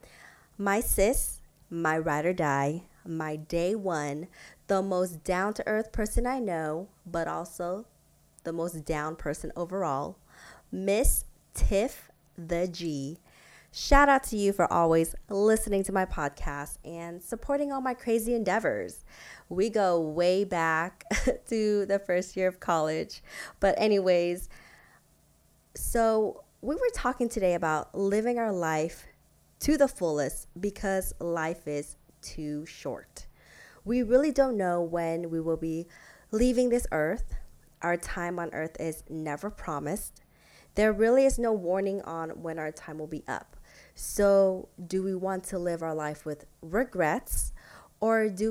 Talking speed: 140 wpm